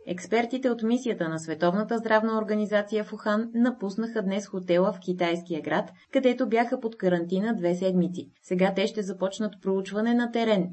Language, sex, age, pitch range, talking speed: Bulgarian, female, 30-49, 175-220 Hz, 150 wpm